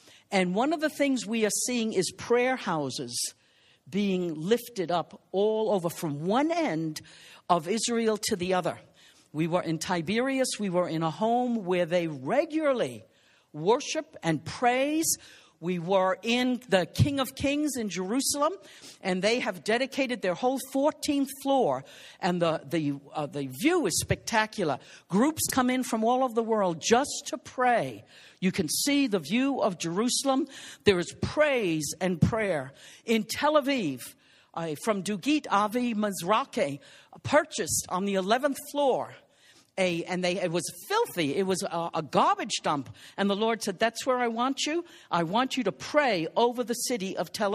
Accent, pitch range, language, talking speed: American, 180-265 Hz, English, 165 wpm